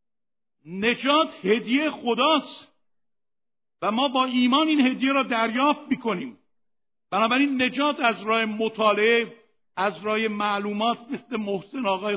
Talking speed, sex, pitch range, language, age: 115 wpm, male, 200-240 Hz, Persian, 60-79